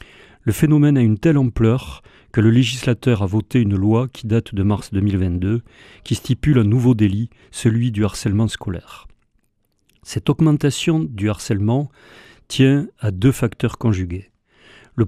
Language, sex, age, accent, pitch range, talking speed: French, male, 40-59, French, 105-125 Hz, 145 wpm